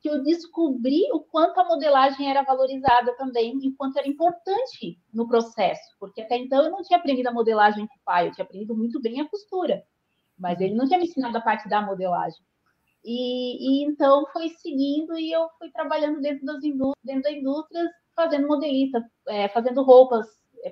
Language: Portuguese